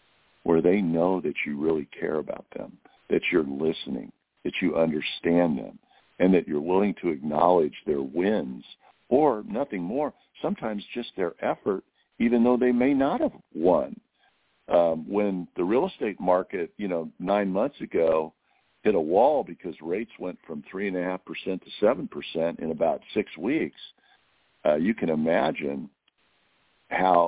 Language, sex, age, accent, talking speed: English, male, 50-69, American, 150 wpm